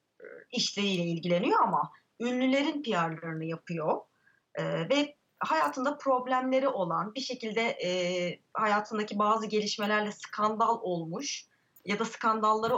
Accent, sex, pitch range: native, female, 175-270 Hz